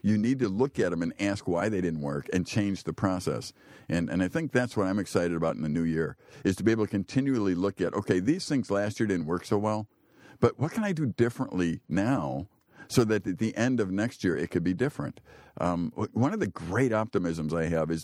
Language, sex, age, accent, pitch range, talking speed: English, male, 50-69, American, 85-115 Hz, 245 wpm